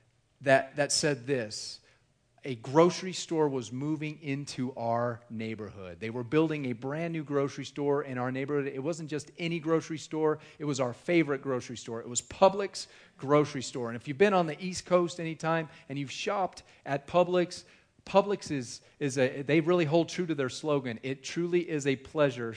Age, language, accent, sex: 40-59, English, American, male